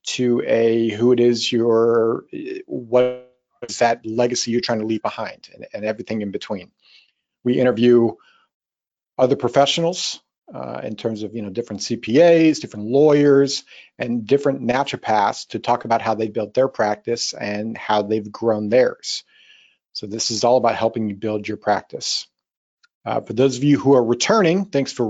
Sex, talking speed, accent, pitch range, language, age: male, 165 wpm, American, 115-135 Hz, English, 40-59